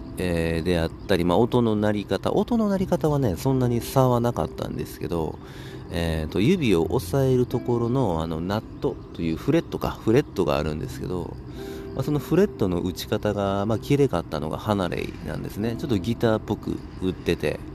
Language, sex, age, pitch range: Japanese, male, 40-59, 80-115 Hz